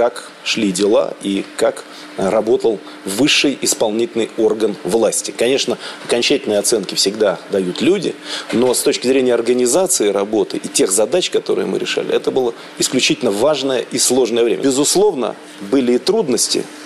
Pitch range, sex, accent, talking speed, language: 110-155 Hz, male, native, 140 wpm, Russian